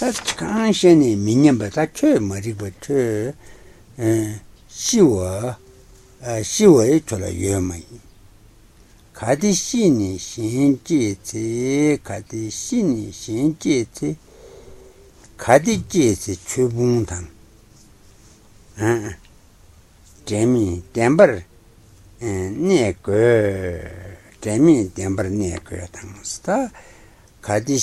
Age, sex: 60-79, male